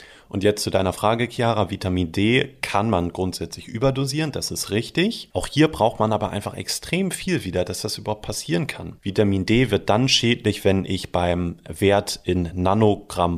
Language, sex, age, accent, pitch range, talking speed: German, male, 30-49, German, 90-120 Hz, 180 wpm